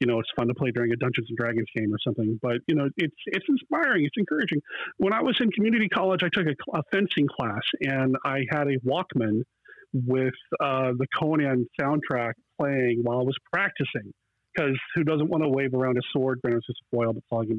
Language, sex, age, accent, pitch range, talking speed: English, male, 40-59, American, 115-145 Hz, 220 wpm